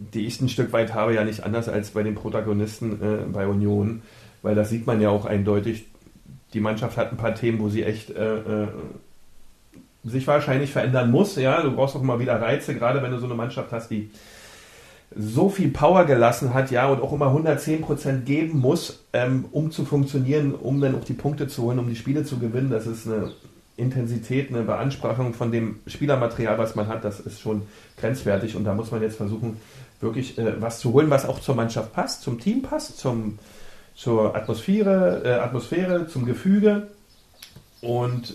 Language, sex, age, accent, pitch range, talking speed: German, male, 40-59, German, 105-135 Hz, 190 wpm